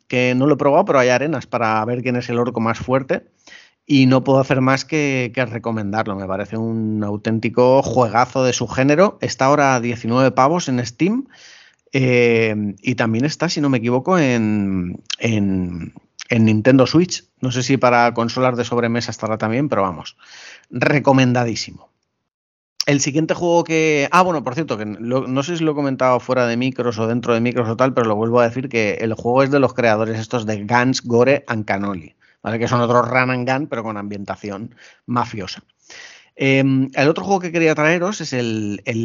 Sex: male